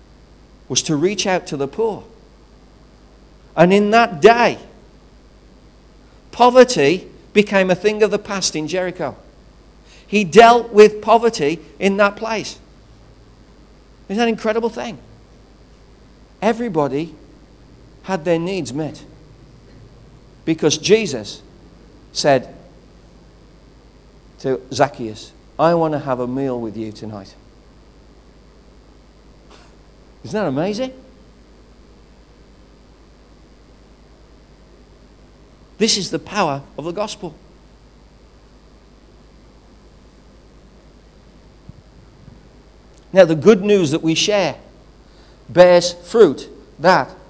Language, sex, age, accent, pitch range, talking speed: English, male, 50-69, British, 140-205 Hz, 90 wpm